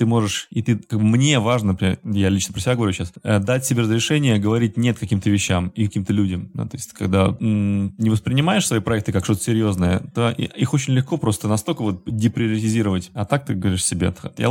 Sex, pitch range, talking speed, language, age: male, 100-120 Hz, 195 wpm, Russian, 20-39